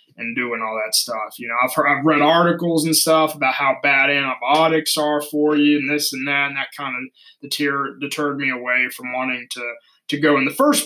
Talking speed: 225 wpm